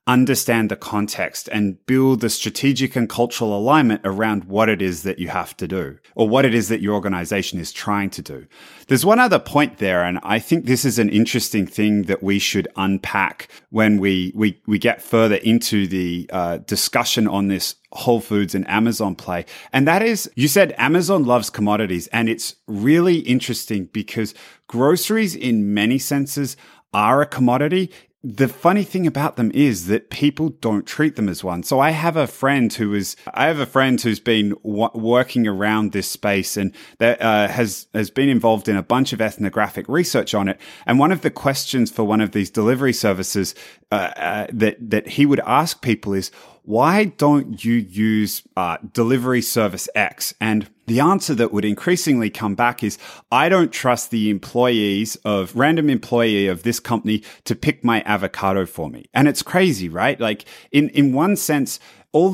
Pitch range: 105-135 Hz